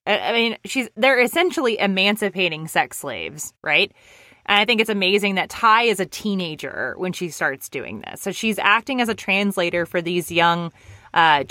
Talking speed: 175 wpm